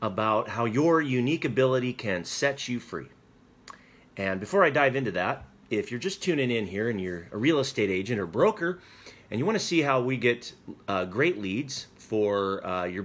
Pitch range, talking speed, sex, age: 110-140 Hz, 195 wpm, male, 30-49